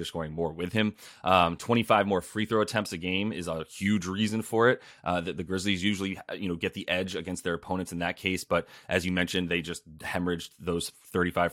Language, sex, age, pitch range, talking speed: English, male, 20-39, 85-105 Hz, 230 wpm